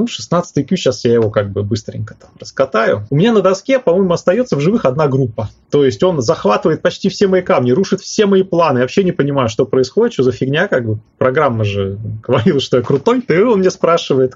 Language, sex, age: Russian, male, 20-39